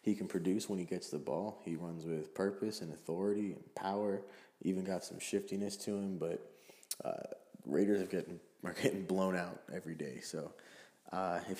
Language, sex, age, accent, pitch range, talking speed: English, male, 20-39, American, 85-105 Hz, 185 wpm